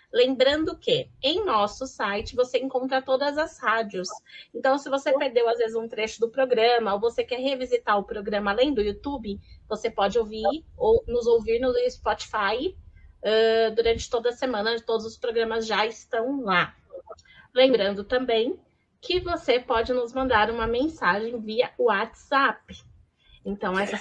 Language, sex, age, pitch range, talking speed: Portuguese, female, 20-39, 220-265 Hz, 150 wpm